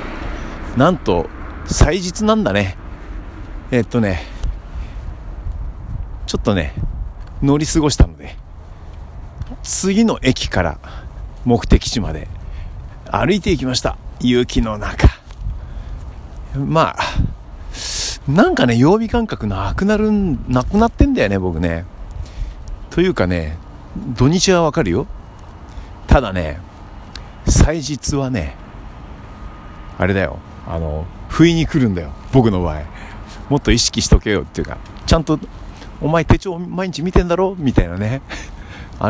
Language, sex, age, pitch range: Japanese, male, 50-69, 80-120 Hz